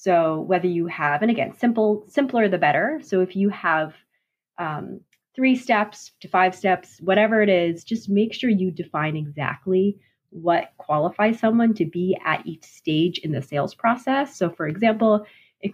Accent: American